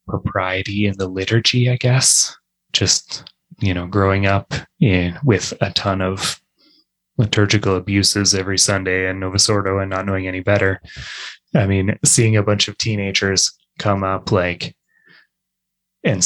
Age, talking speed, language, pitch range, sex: 20-39, 145 wpm, English, 95-115 Hz, male